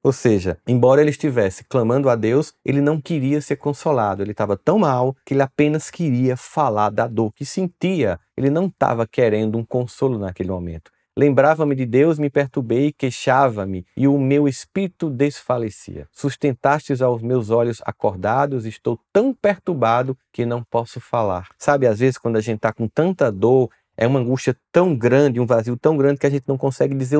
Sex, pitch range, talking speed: male, 115-155 Hz, 185 wpm